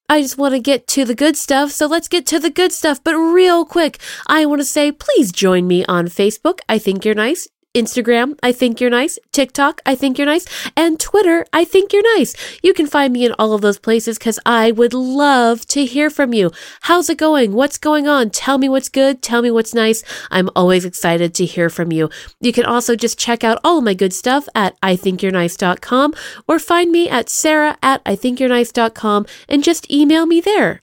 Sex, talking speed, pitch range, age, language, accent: female, 215 wpm, 225-310 Hz, 30-49, English, American